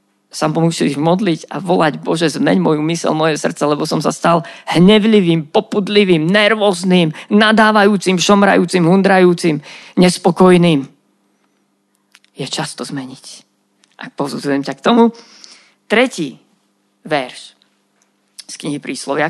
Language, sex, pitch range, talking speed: Slovak, female, 145-190 Hz, 110 wpm